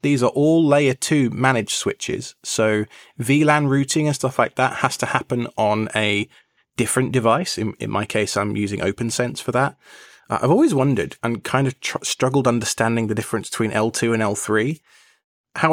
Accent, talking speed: British, 175 wpm